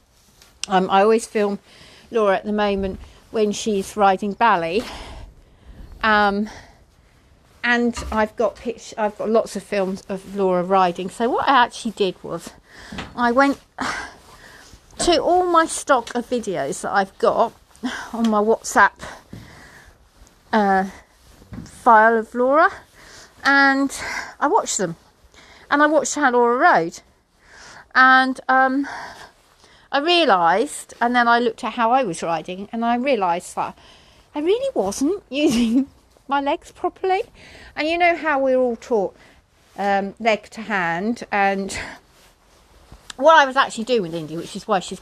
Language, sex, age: English, female, 40-59